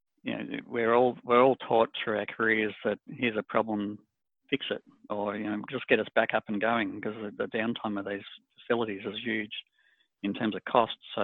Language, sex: English, male